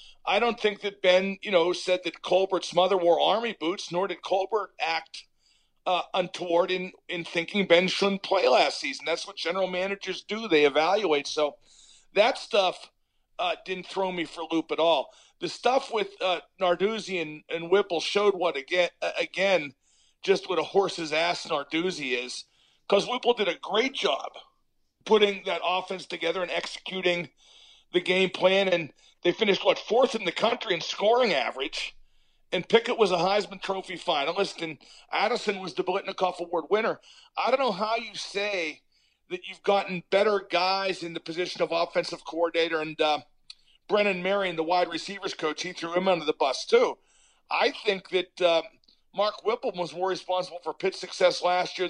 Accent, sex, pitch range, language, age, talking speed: American, male, 170-200 Hz, English, 40-59, 175 wpm